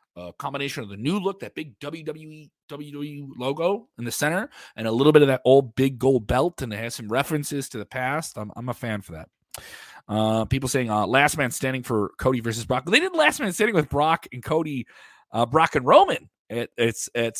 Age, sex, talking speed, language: 30-49, male, 215 wpm, English